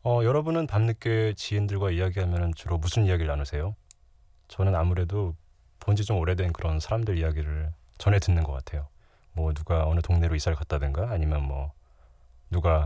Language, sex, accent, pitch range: Korean, male, native, 75-100 Hz